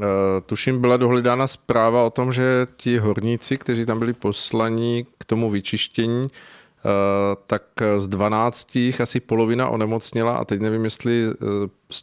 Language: Czech